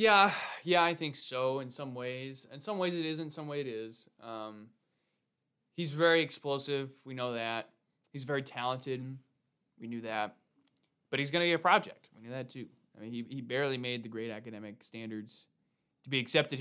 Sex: male